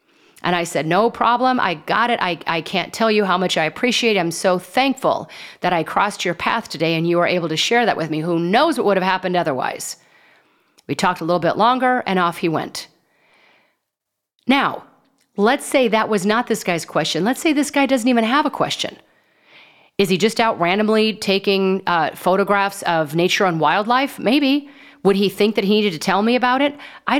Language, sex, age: English, female, 40-59